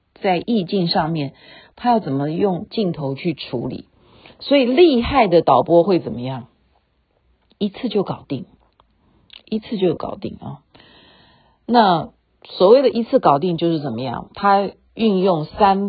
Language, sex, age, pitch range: Chinese, female, 40-59, 155-215 Hz